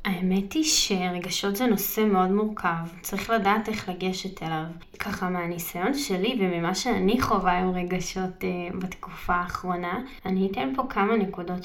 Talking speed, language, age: 140 wpm, Hebrew, 20-39